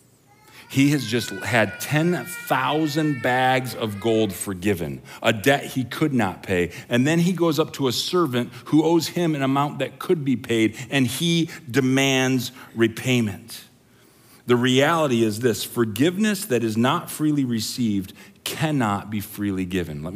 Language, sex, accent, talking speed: English, male, American, 150 wpm